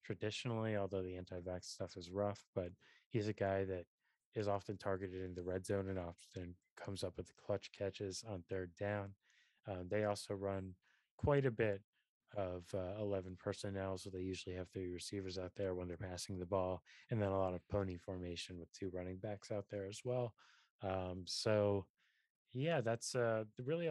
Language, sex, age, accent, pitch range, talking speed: English, male, 20-39, American, 95-105 Hz, 190 wpm